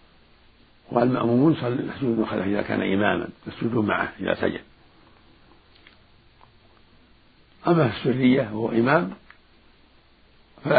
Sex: male